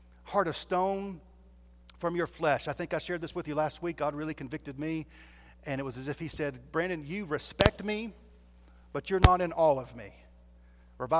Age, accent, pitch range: 40-59, American, 120-190 Hz